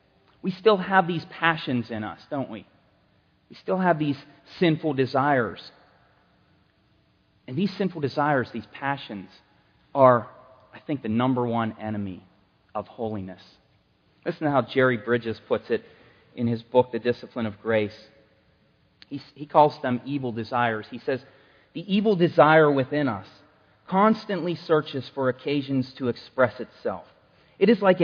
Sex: male